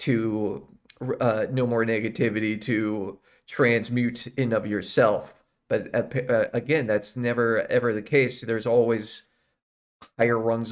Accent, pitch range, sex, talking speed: American, 115-155 Hz, male, 125 wpm